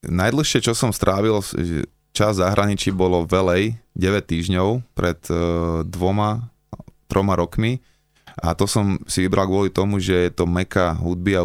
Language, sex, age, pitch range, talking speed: Slovak, male, 20-39, 85-95 Hz, 140 wpm